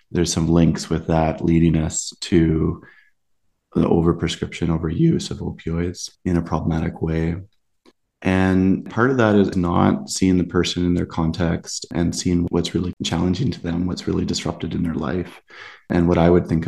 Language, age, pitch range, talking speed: English, 30-49, 85-95 Hz, 170 wpm